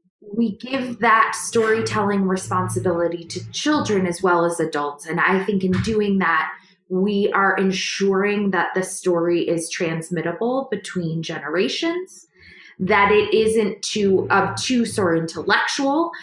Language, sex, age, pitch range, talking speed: English, female, 20-39, 175-225 Hz, 125 wpm